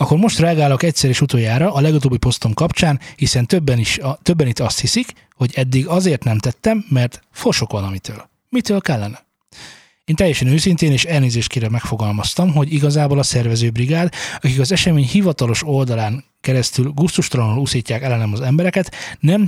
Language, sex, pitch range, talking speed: Hungarian, male, 115-155 Hz, 155 wpm